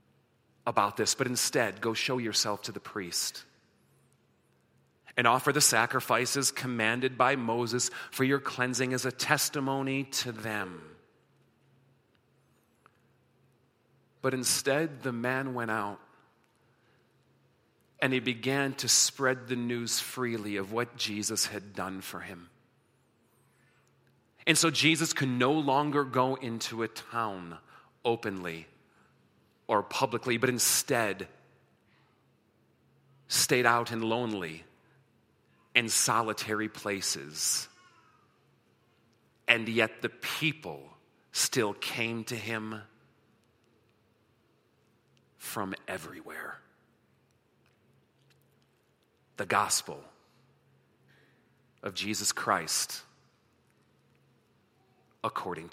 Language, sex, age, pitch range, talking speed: English, male, 40-59, 110-130 Hz, 95 wpm